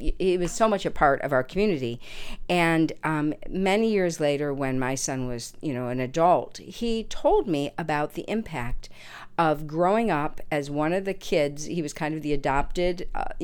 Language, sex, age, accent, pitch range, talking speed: English, female, 50-69, American, 150-200 Hz, 190 wpm